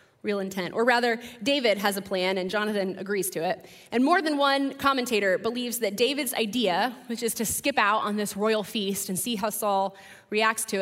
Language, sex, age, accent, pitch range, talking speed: English, female, 20-39, American, 205-270 Hz, 205 wpm